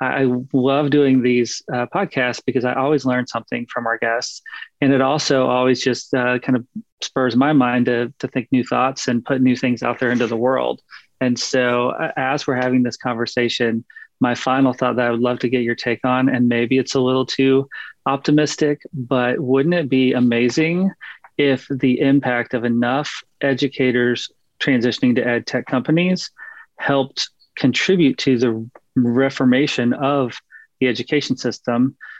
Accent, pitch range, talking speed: American, 125-145 Hz, 170 wpm